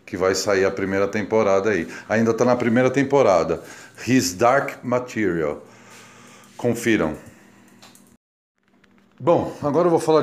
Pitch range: 100-125 Hz